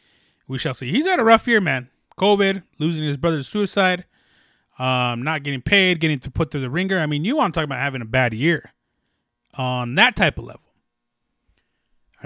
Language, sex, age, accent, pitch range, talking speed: English, male, 20-39, American, 110-165 Hz, 205 wpm